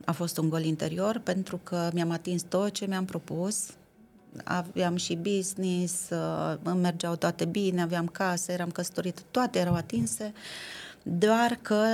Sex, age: female, 30-49